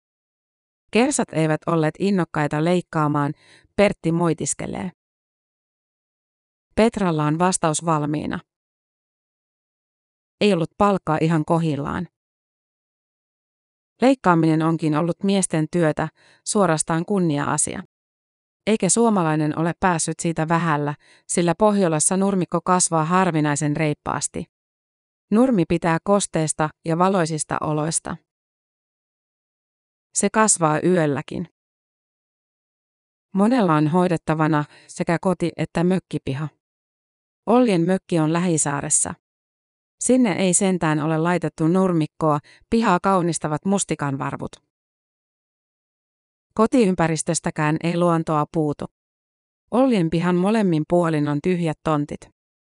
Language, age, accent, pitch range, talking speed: Finnish, 30-49, native, 155-185 Hz, 85 wpm